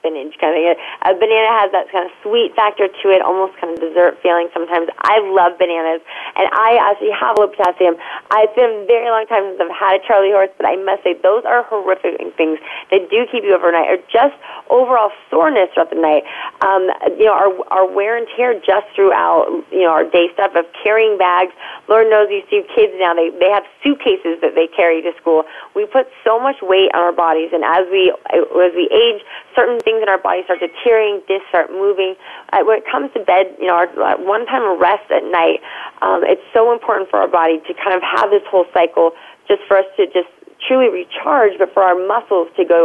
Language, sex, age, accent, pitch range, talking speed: English, female, 30-49, American, 175-225 Hz, 220 wpm